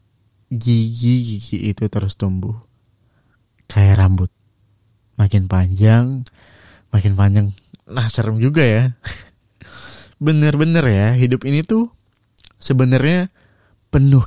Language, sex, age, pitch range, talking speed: Indonesian, male, 20-39, 100-120 Hz, 90 wpm